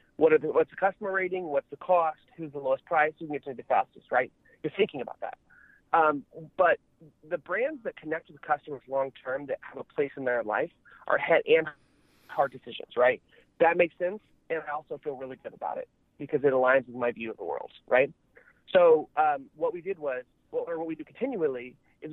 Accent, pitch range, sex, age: American, 145-195 Hz, male, 30-49